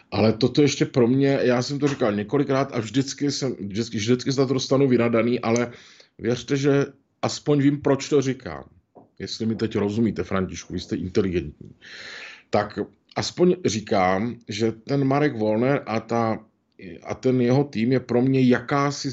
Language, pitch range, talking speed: Czech, 110-135 Hz, 165 wpm